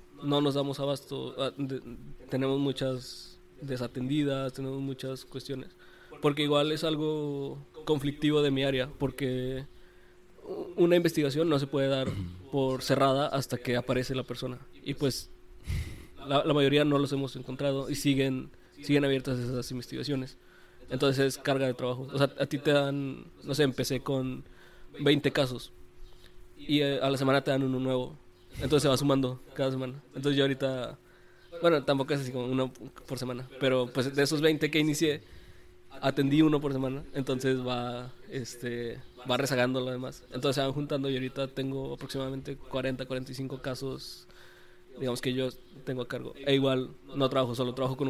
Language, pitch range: Spanish, 130-140 Hz